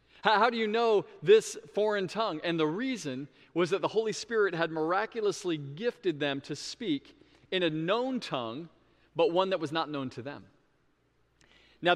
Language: English